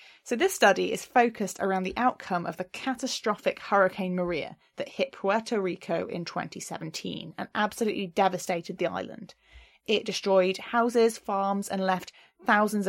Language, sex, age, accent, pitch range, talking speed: English, female, 20-39, British, 190-245 Hz, 145 wpm